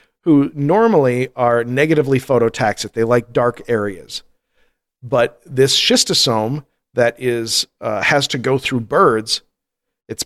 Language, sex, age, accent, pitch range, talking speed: English, male, 40-59, American, 115-150 Hz, 125 wpm